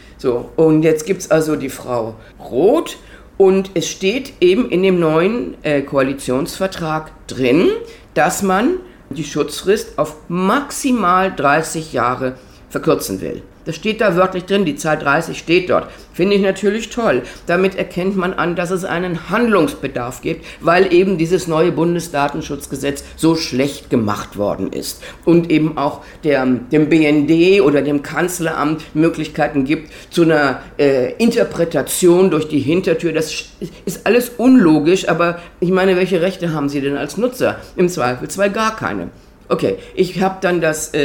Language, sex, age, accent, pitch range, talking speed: German, female, 50-69, German, 145-190 Hz, 150 wpm